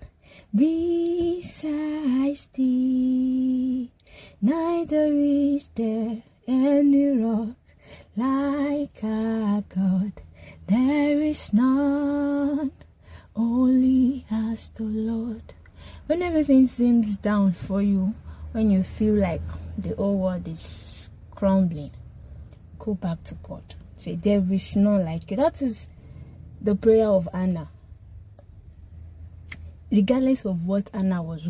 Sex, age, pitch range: female, 20-39, 170-230 Hz